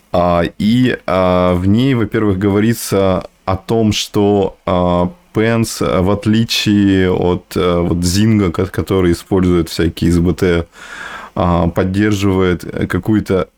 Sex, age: male, 20-39